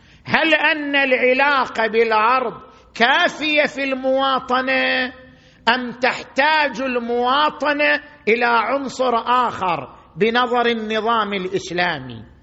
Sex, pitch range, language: male, 170-255 Hz, Arabic